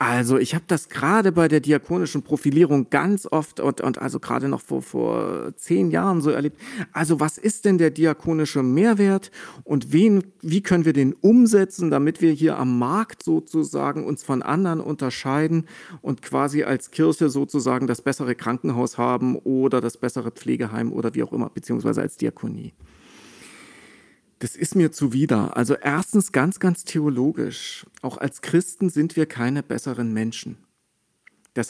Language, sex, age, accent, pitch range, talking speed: German, male, 40-59, German, 130-160 Hz, 155 wpm